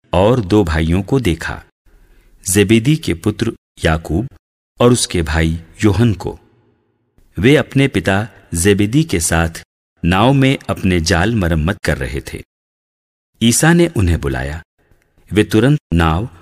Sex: male